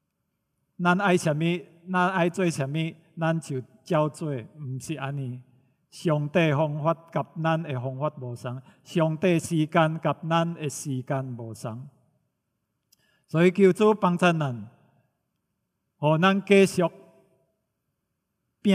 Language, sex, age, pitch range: English, male, 50-69, 135-170 Hz